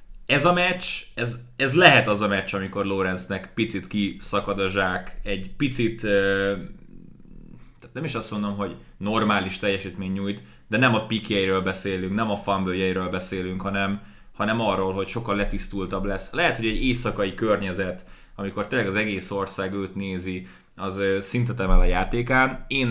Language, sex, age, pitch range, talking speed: Hungarian, male, 20-39, 95-110 Hz, 155 wpm